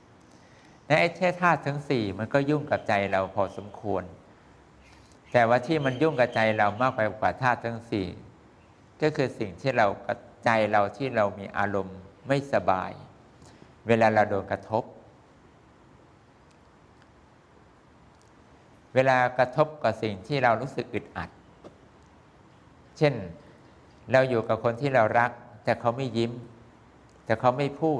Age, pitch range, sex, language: 60-79, 105-135 Hz, male, English